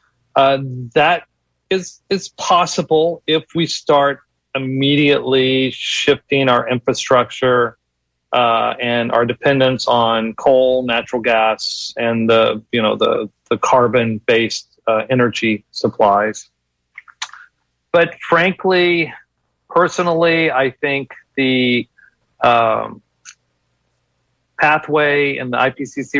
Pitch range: 120-145 Hz